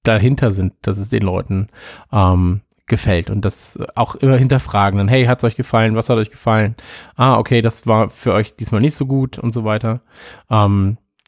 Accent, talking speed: German, 190 wpm